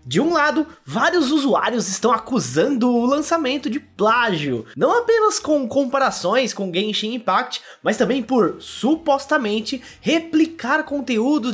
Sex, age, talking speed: male, 20-39, 125 wpm